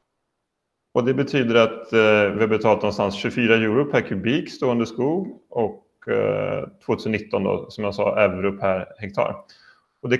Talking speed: 140 wpm